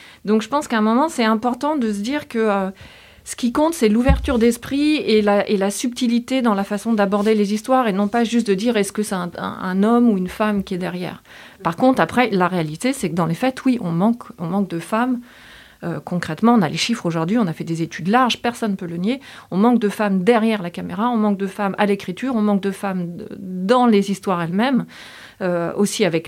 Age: 30-49